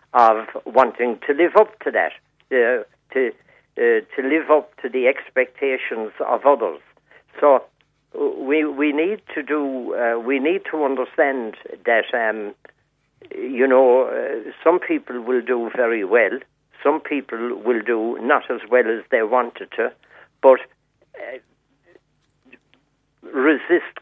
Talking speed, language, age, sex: 135 wpm, English, 60-79, male